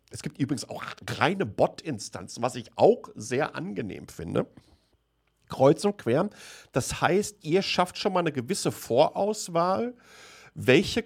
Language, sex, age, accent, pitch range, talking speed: German, male, 50-69, German, 115-175 Hz, 135 wpm